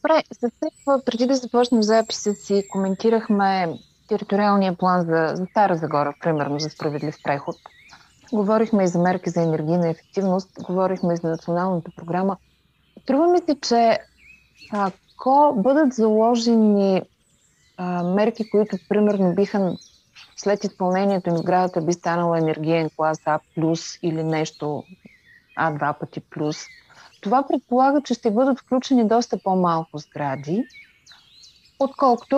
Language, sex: Bulgarian, female